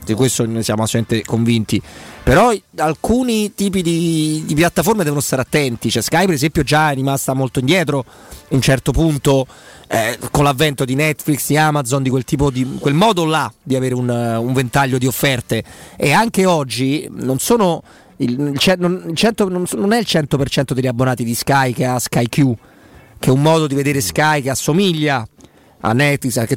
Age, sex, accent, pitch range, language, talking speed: 30-49, male, native, 125-155 Hz, Italian, 195 wpm